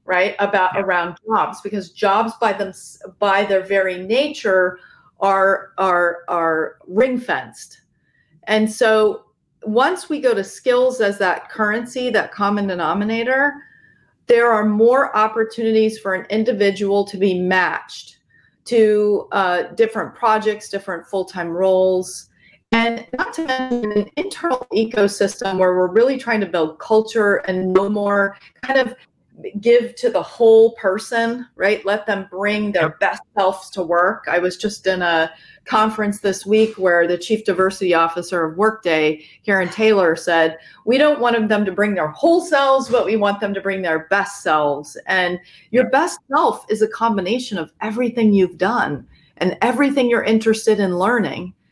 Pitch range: 190-230 Hz